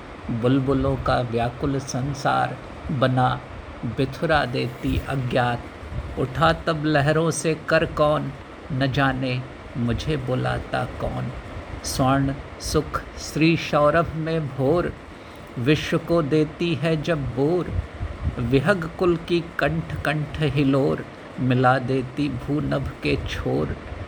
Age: 50-69